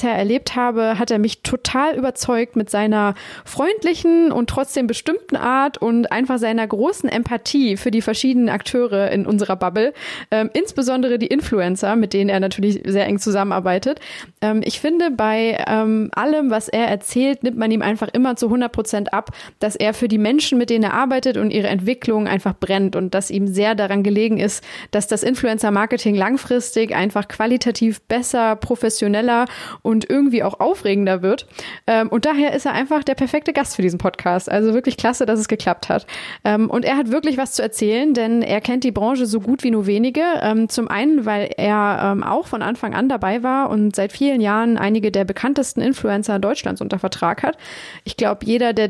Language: German